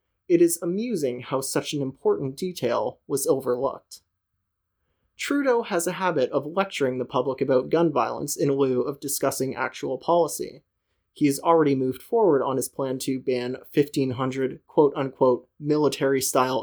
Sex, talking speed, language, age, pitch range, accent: male, 145 wpm, English, 30-49, 130-170 Hz, American